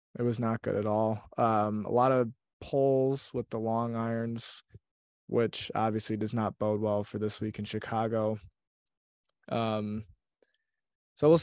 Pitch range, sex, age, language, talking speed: 110-130 Hz, male, 20-39, English, 150 wpm